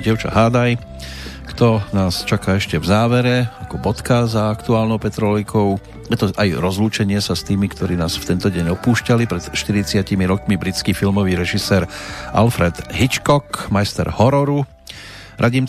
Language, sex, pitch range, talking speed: Slovak, male, 90-115 Hz, 140 wpm